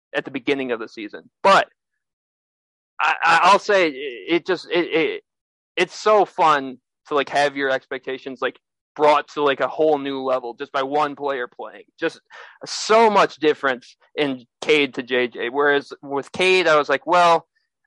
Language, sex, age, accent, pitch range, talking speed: English, male, 20-39, American, 130-165 Hz, 170 wpm